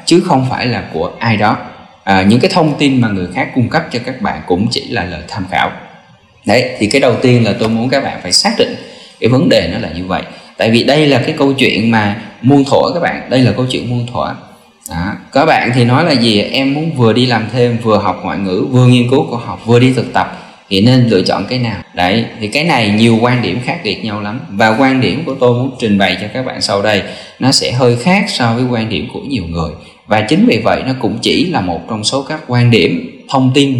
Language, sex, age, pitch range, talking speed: Vietnamese, male, 20-39, 105-130 Hz, 255 wpm